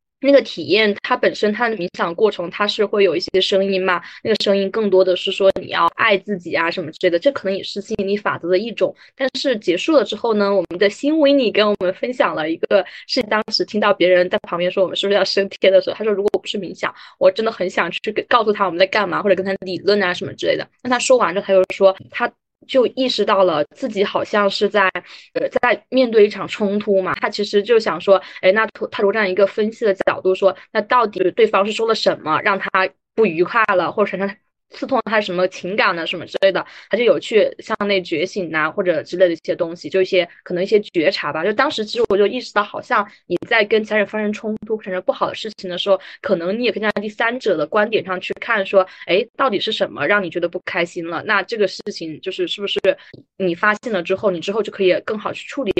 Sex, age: female, 20-39